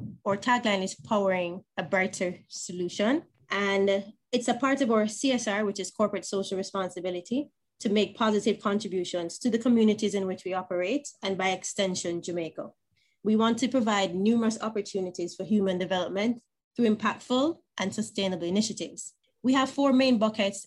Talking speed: 155 wpm